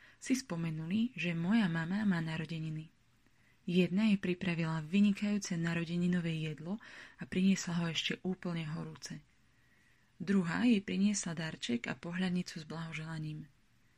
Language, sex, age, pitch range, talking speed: Slovak, female, 20-39, 160-195 Hz, 115 wpm